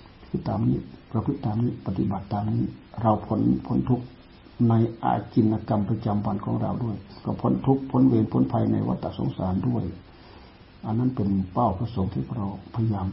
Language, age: Thai, 60-79